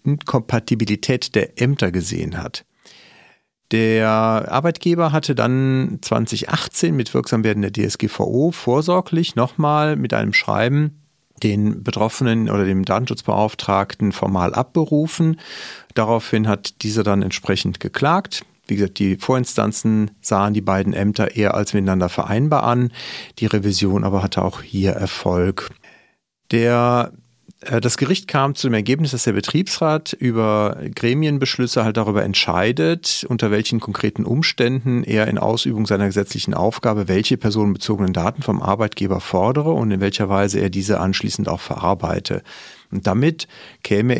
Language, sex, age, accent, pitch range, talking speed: German, male, 40-59, German, 100-125 Hz, 130 wpm